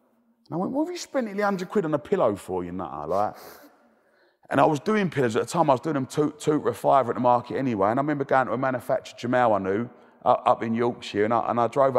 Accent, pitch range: British, 115-145 Hz